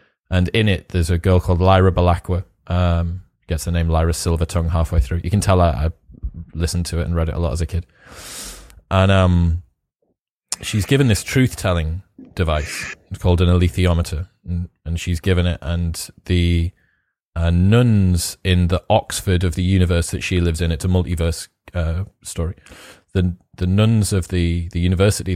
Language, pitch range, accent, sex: English, 85-95 Hz, British, male